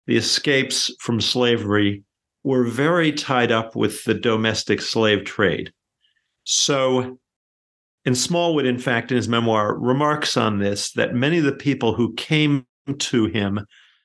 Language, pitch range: English, 115-135 Hz